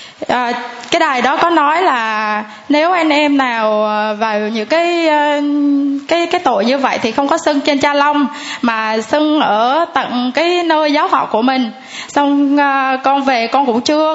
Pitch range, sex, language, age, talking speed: 245-300 Hz, female, Vietnamese, 20-39, 180 wpm